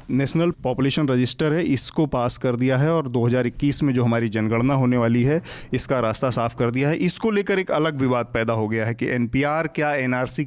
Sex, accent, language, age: male, native, Hindi, 30-49